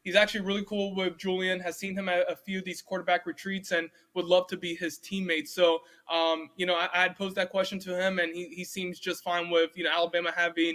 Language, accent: English, American